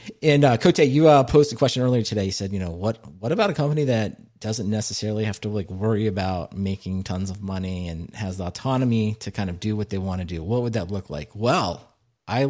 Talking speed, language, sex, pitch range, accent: 245 wpm, English, male, 100-120 Hz, American